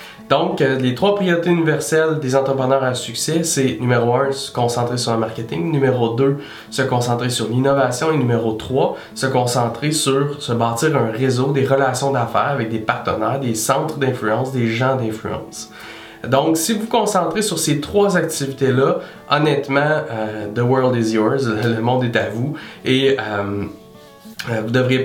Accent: Canadian